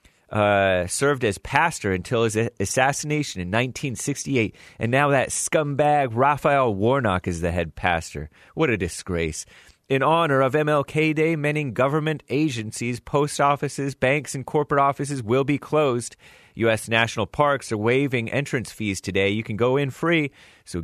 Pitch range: 105-150 Hz